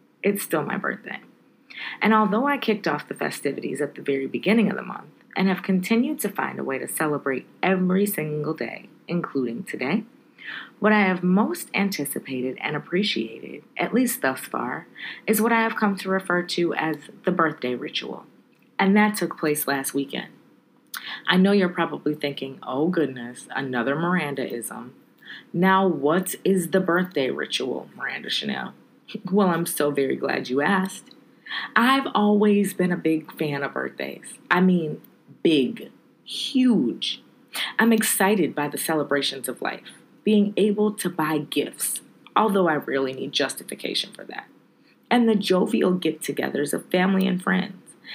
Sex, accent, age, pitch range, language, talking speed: female, American, 30-49, 155-215 Hz, English, 155 wpm